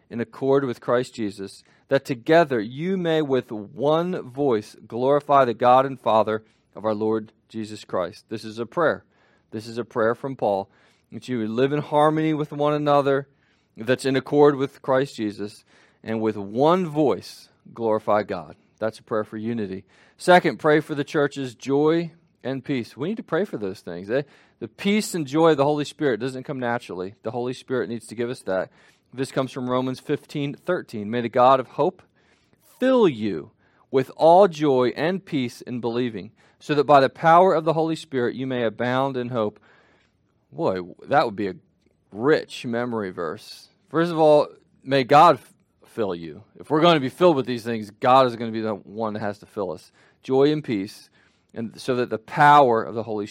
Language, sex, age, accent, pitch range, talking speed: English, male, 40-59, American, 115-150 Hz, 195 wpm